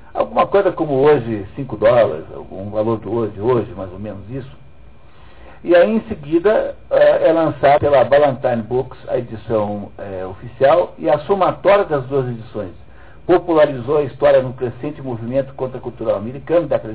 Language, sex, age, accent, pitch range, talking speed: Portuguese, male, 60-79, Brazilian, 115-150 Hz, 155 wpm